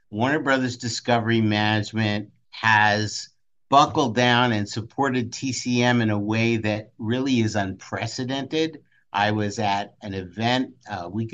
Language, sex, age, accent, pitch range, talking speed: English, male, 50-69, American, 110-130 Hz, 125 wpm